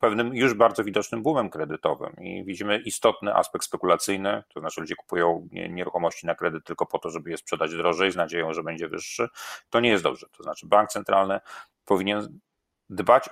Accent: native